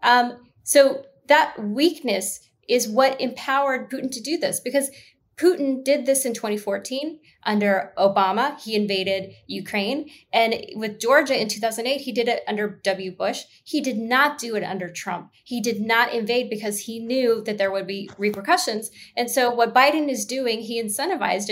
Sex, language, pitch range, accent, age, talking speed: female, English, 210-275 Hz, American, 20-39, 165 wpm